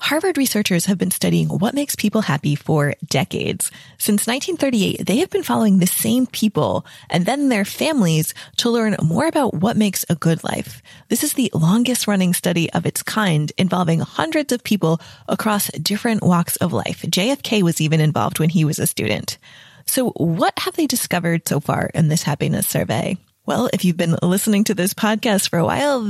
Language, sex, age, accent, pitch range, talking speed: English, female, 20-39, American, 170-230 Hz, 190 wpm